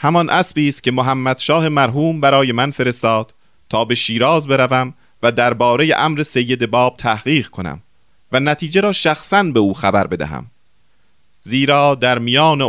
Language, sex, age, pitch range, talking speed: Persian, male, 40-59, 105-145 Hz, 150 wpm